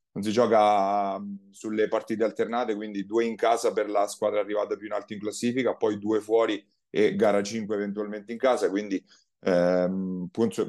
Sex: male